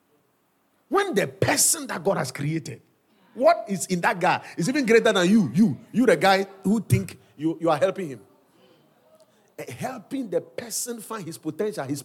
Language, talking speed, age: English, 175 wpm, 50-69